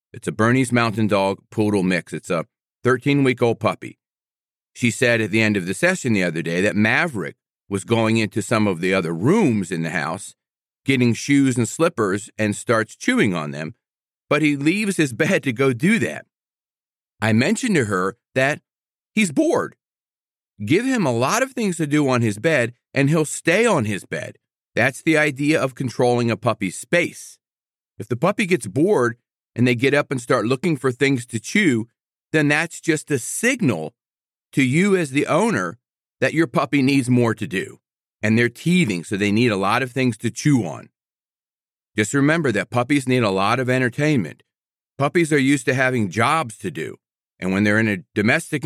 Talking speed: 190 wpm